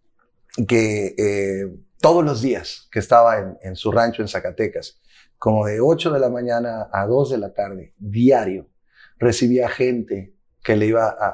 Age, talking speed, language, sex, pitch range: 30-49, 165 wpm, Spanish, male, 105-130 Hz